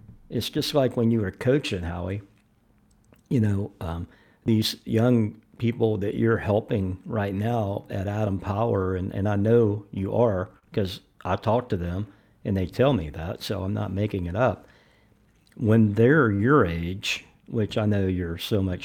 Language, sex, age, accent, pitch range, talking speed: English, male, 50-69, American, 95-115 Hz, 170 wpm